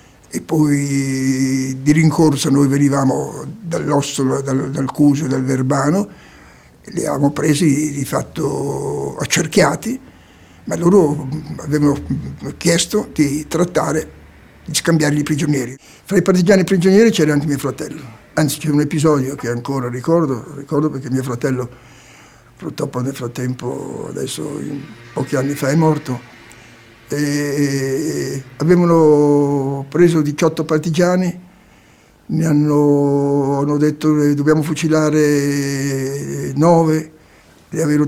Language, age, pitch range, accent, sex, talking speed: Italian, 60-79, 140-160 Hz, native, male, 115 wpm